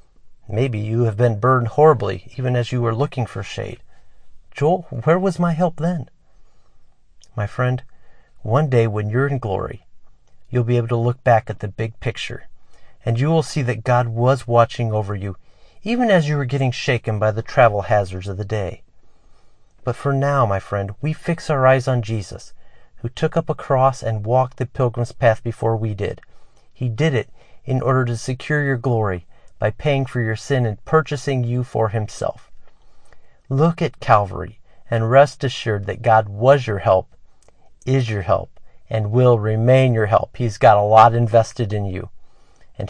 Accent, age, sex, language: American, 40-59, male, English